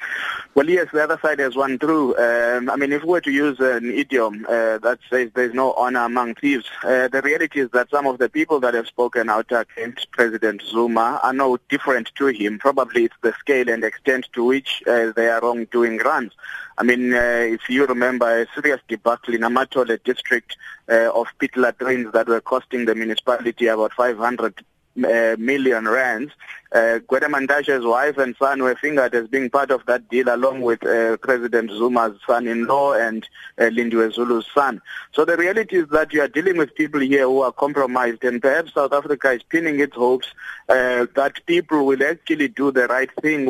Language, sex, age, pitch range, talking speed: English, male, 20-39, 120-140 Hz, 195 wpm